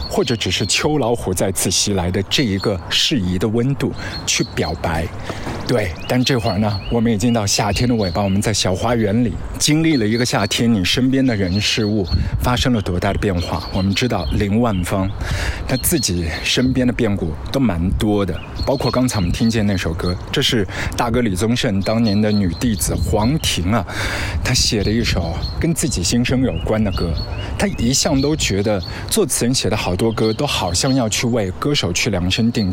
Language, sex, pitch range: Chinese, male, 100-125 Hz